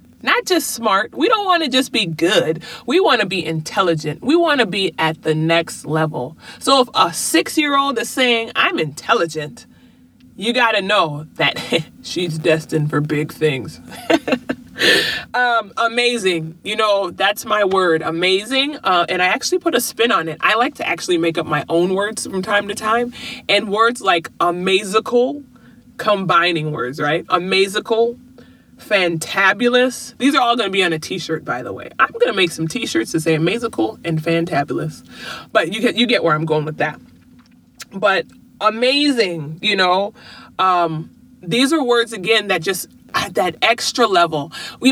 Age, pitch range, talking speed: 30-49, 165-245 Hz, 170 wpm